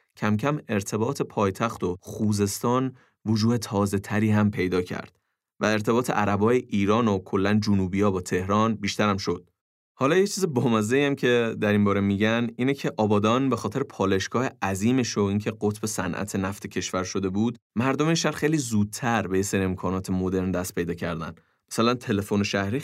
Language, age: Persian, 30-49